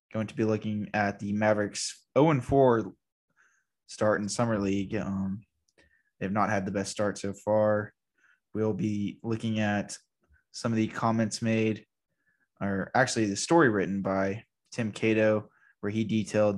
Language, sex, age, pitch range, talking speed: English, male, 20-39, 100-115 Hz, 150 wpm